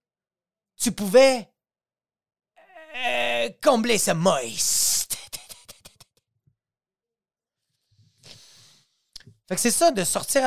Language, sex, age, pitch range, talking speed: French, male, 30-49, 145-210 Hz, 70 wpm